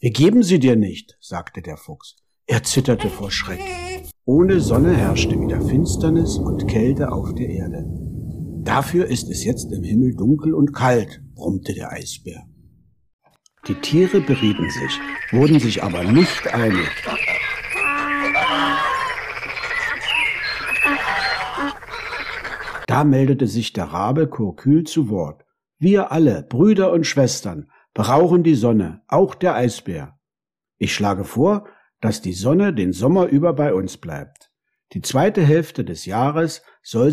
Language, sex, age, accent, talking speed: German, male, 60-79, German, 130 wpm